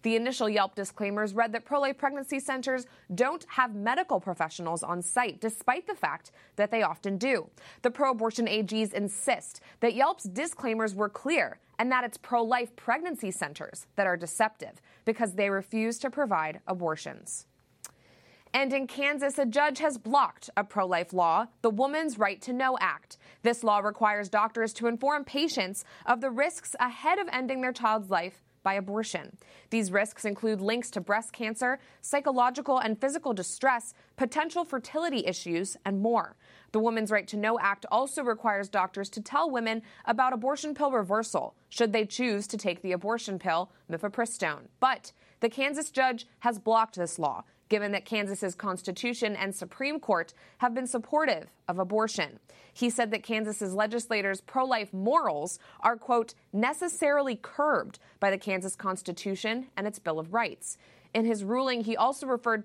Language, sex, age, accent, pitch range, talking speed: English, female, 20-39, American, 200-255 Hz, 160 wpm